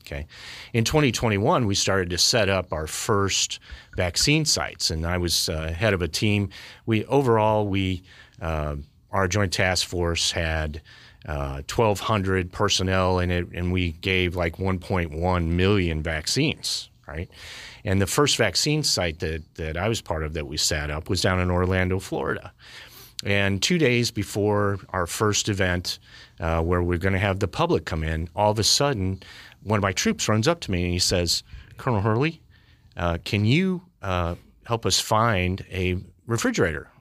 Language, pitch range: English, 90-110 Hz